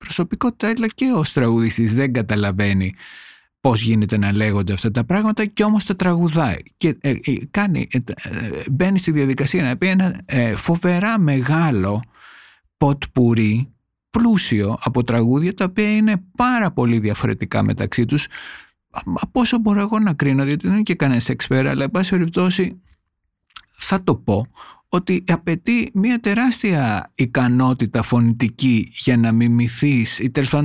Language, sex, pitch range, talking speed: Greek, male, 120-185 Hz, 150 wpm